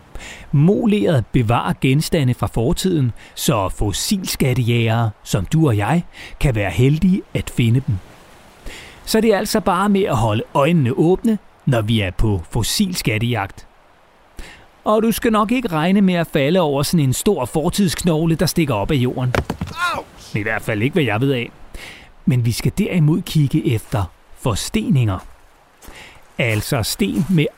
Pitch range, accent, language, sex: 120-185 Hz, native, Danish, male